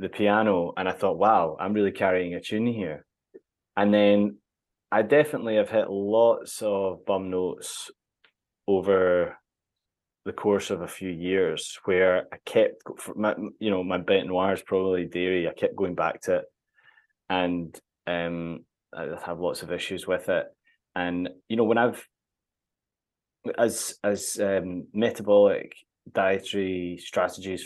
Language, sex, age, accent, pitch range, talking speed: English, male, 20-39, British, 90-110 Hz, 140 wpm